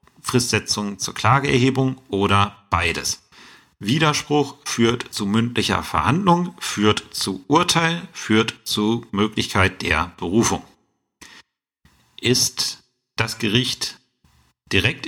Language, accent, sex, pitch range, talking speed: German, German, male, 95-120 Hz, 90 wpm